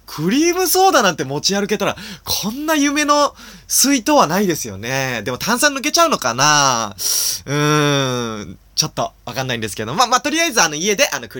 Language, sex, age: Japanese, male, 20-39